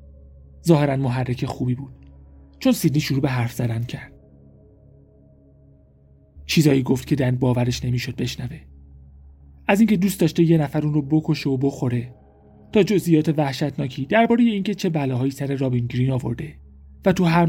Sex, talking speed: male, 150 wpm